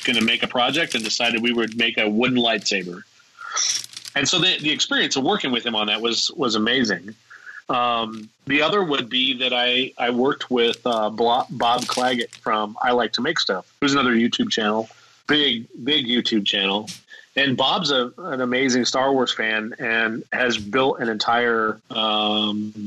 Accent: American